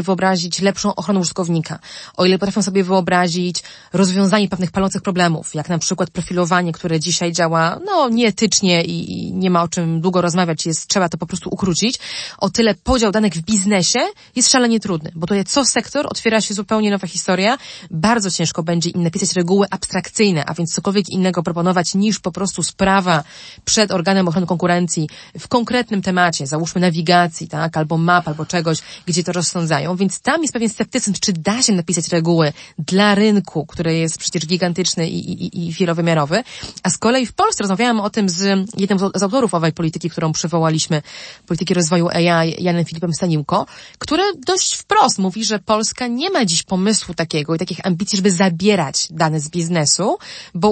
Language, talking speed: Polish, 175 wpm